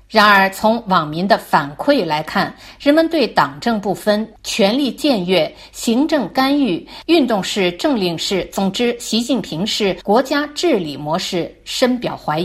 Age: 50-69